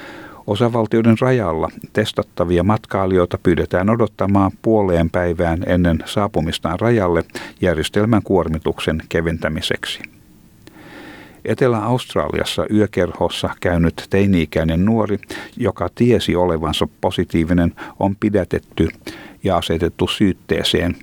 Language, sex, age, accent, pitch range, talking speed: Finnish, male, 60-79, native, 85-105 Hz, 80 wpm